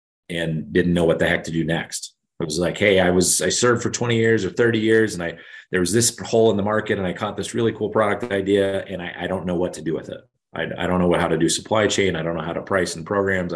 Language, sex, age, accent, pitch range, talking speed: English, male, 30-49, American, 85-95 Hz, 300 wpm